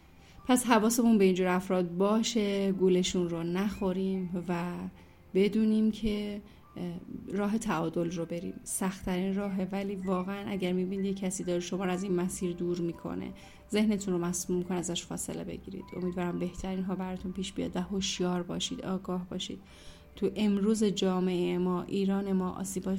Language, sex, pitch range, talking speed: Persian, female, 185-205 Hz, 145 wpm